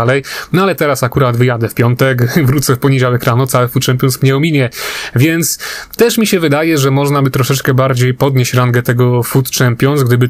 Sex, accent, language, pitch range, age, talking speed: male, native, Polish, 125-145 Hz, 30-49, 190 wpm